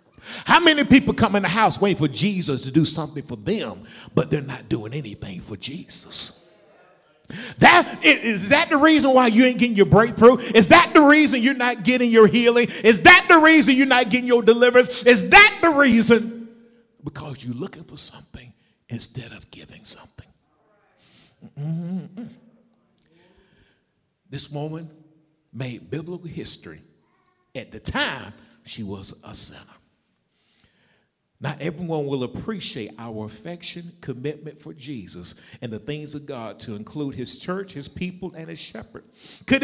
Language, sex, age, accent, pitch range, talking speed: English, male, 50-69, American, 150-245 Hz, 155 wpm